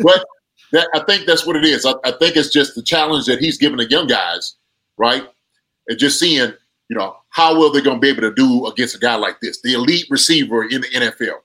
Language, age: English, 30-49